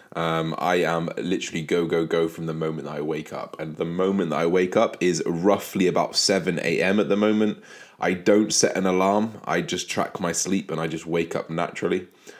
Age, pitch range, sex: 20-39, 80-95 Hz, male